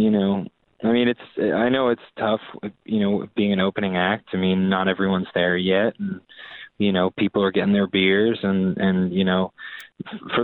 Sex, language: male, English